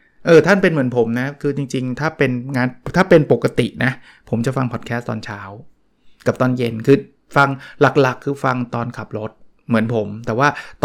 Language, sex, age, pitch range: Thai, male, 20-39, 115-140 Hz